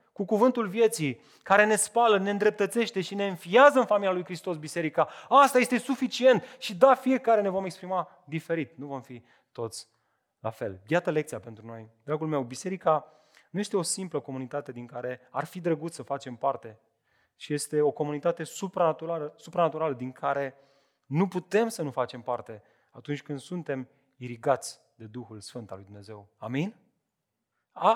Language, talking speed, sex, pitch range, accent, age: Romanian, 165 wpm, male, 145-245 Hz, native, 30-49